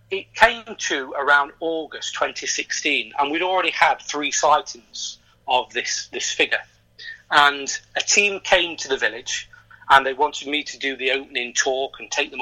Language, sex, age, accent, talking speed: English, male, 40-59, British, 170 wpm